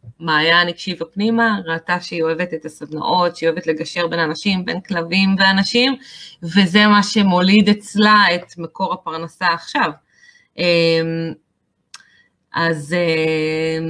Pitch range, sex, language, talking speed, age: 165-210 Hz, female, Hebrew, 110 wpm, 20-39